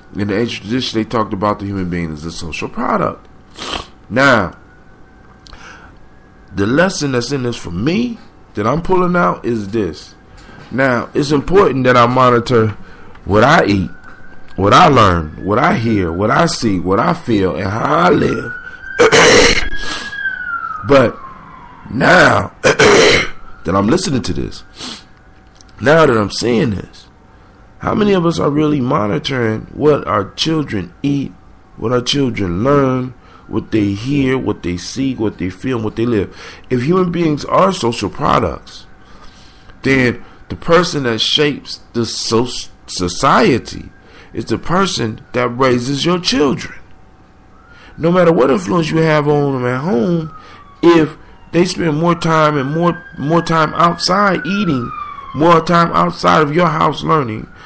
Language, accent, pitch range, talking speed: English, American, 105-170 Hz, 145 wpm